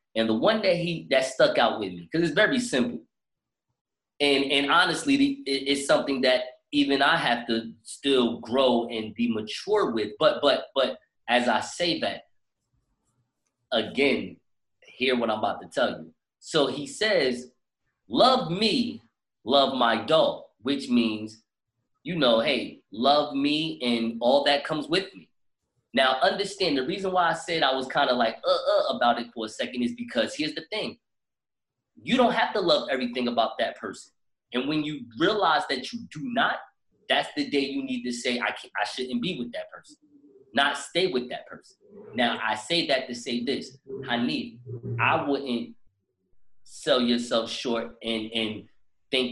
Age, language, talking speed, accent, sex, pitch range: 20-39, English, 175 wpm, American, male, 120-180 Hz